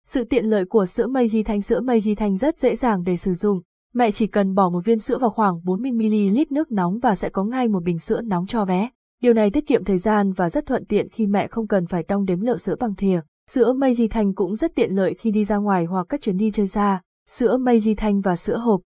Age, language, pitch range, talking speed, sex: 20-39, Vietnamese, 195-240 Hz, 275 wpm, female